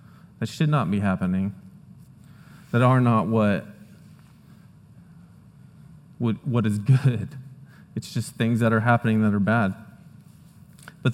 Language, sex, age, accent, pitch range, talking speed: English, male, 20-39, American, 115-160 Hz, 125 wpm